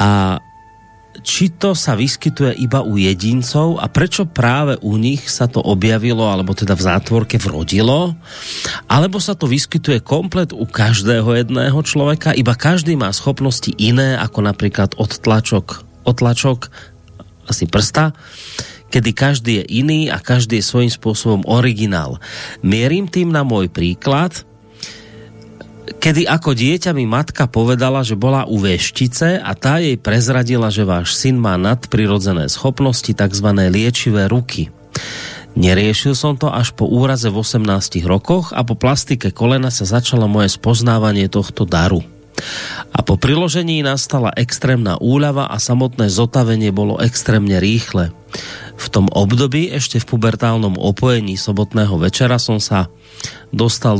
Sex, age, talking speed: male, 30-49, 135 wpm